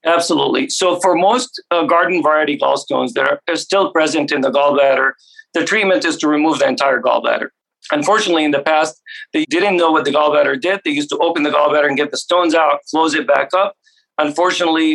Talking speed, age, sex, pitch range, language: 205 wpm, 40-59, male, 145-170 Hz, English